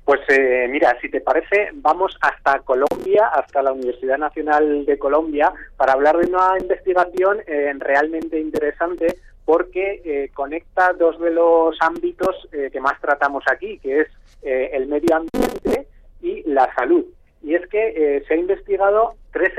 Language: Spanish